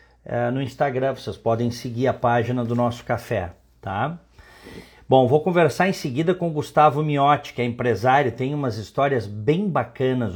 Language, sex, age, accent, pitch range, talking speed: Portuguese, male, 50-69, Brazilian, 115-145 Hz, 160 wpm